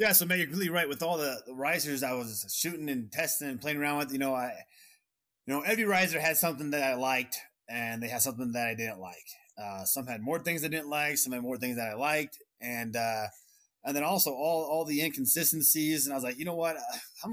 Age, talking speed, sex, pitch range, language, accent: 20-39, 255 wpm, male, 120-160 Hz, English, American